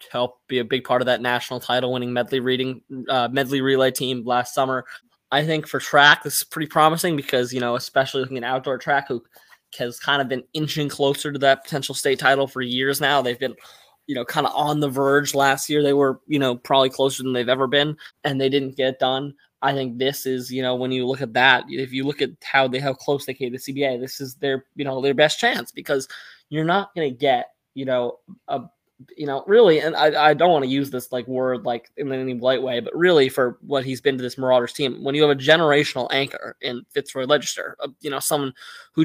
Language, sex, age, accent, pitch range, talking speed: English, male, 20-39, American, 130-145 Hz, 240 wpm